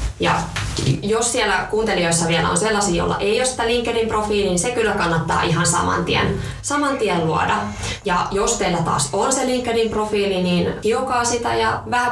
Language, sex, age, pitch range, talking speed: Finnish, female, 20-39, 170-220 Hz, 175 wpm